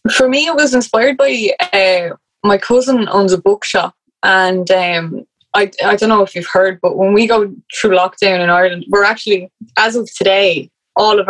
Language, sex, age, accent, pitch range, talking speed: English, female, 20-39, Irish, 180-215 Hz, 190 wpm